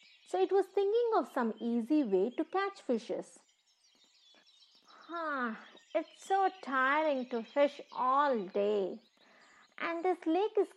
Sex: female